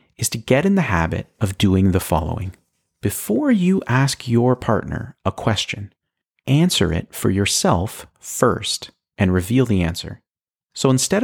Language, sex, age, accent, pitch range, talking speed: English, male, 40-59, American, 100-140 Hz, 150 wpm